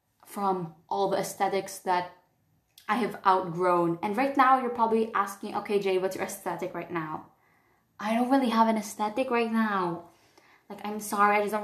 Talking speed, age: 180 wpm, 20-39